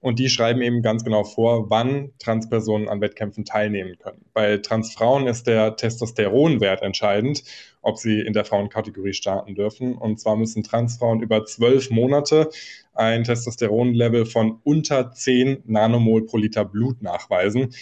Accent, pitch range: German, 110-125 Hz